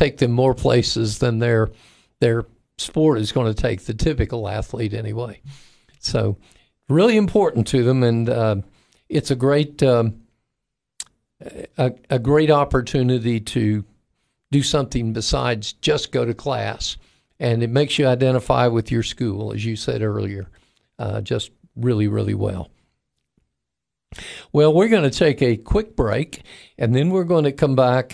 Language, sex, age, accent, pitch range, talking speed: English, male, 50-69, American, 115-145 Hz, 150 wpm